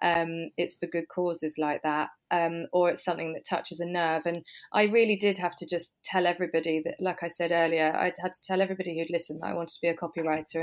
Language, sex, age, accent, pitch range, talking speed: English, female, 20-39, British, 160-185 Hz, 245 wpm